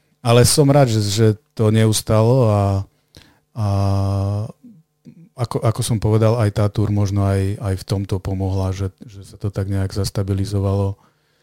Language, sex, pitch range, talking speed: Slovak, male, 100-115 Hz, 145 wpm